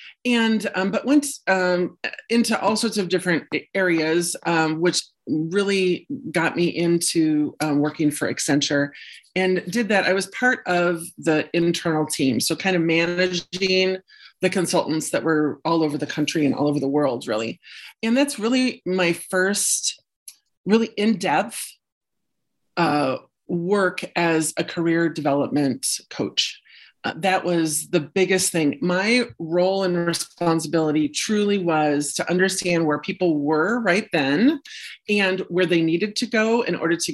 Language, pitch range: English, 160-190 Hz